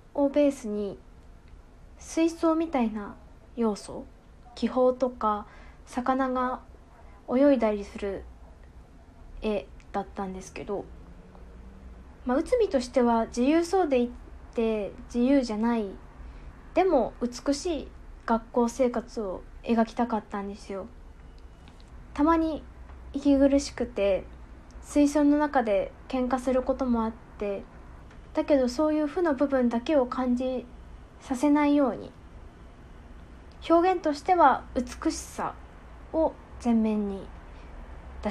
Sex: female